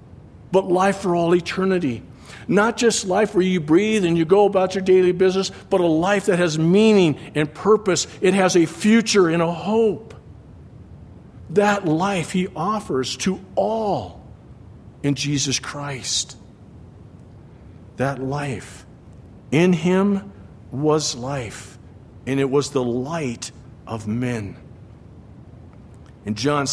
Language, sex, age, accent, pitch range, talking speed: English, male, 50-69, American, 125-170 Hz, 130 wpm